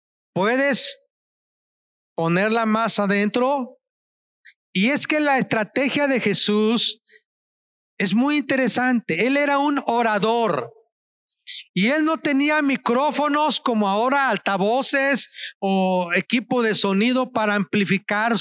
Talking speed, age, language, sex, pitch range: 105 wpm, 40-59, Spanish, male, 210-270 Hz